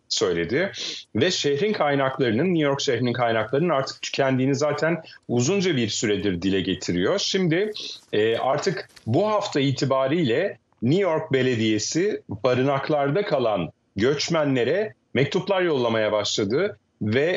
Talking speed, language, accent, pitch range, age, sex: 110 wpm, Turkish, native, 110-155 Hz, 40-59, male